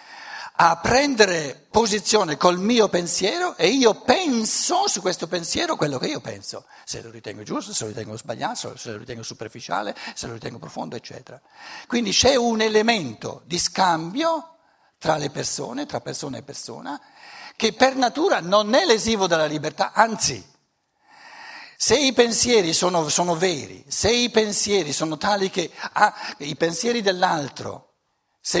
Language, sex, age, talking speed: Italian, male, 60-79, 150 wpm